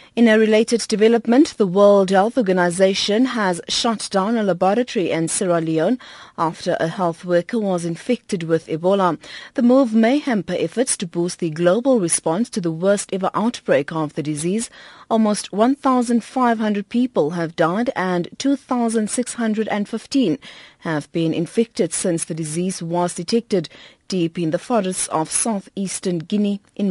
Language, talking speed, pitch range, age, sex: English, 145 wpm, 175-230 Hz, 30-49, female